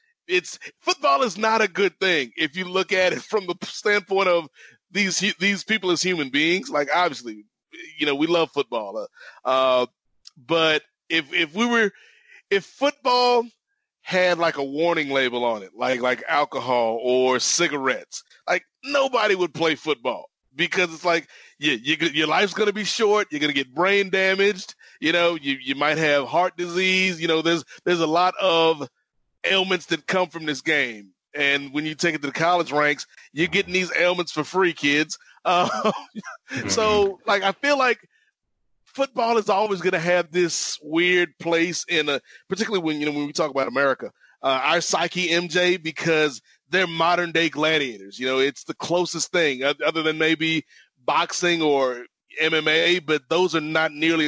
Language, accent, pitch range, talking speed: English, American, 150-190 Hz, 175 wpm